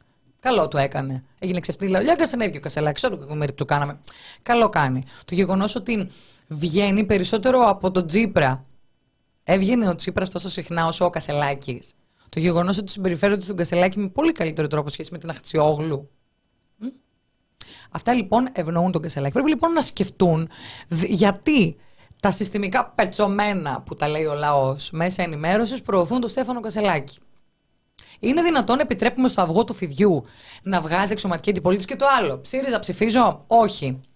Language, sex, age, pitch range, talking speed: Greek, female, 20-39, 155-215 Hz, 155 wpm